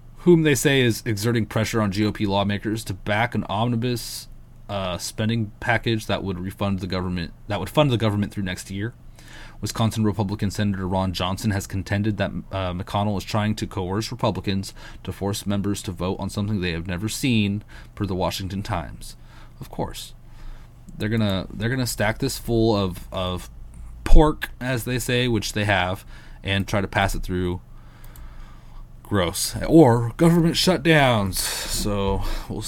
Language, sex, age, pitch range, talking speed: English, male, 20-39, 95-125 Hz, 165 wpm